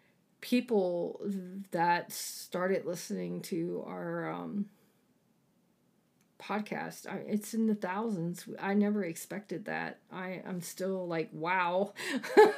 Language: English